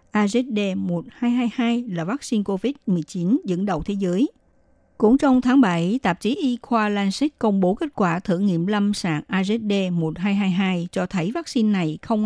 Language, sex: Vietnamese, female